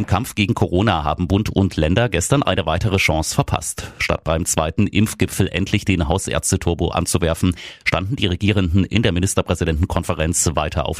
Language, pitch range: German, 85-100 Hz